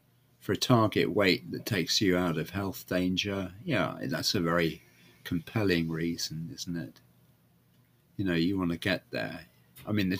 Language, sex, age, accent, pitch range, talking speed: English, male, 40-59, British, 85-120 Hz, 170 wpm